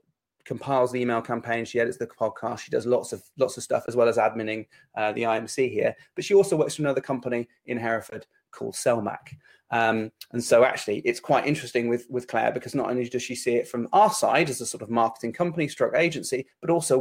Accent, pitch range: British, 115-140 Hz